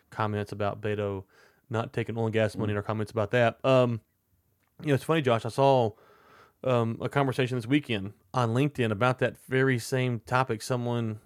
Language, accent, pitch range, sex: English, American, 100-125 Hz, male